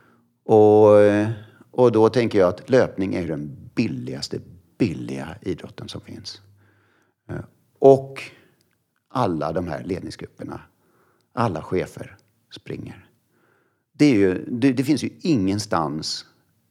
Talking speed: 110 wpm